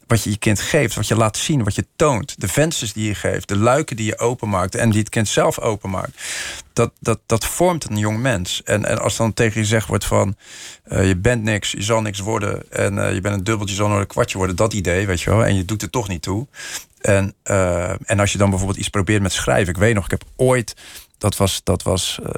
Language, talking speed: Dutch, 255 wpm